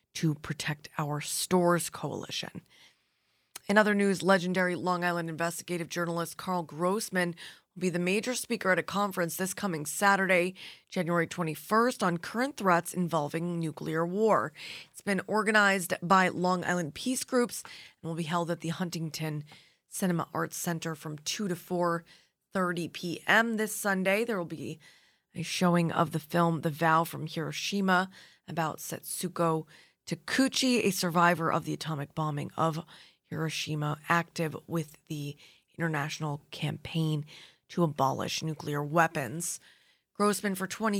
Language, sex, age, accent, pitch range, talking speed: English, female, 20-39, American, 160-185 Hz, 140 wpm